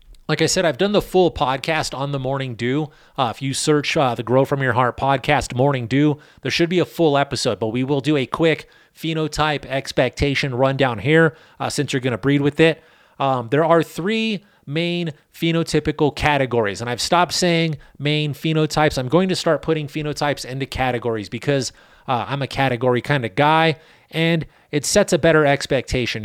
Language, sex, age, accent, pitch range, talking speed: English, male, 30-49, American, 130-160 Hz, 190 wpm